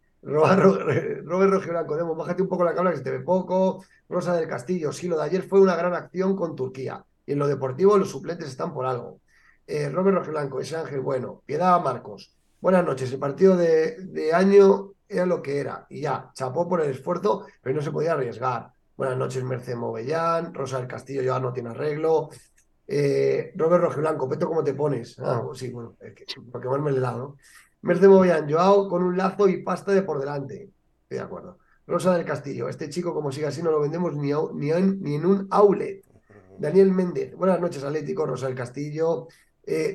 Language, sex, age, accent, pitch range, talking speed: Spanish, male, 30-49, Spanish, 140-190 Hz, 200 wpm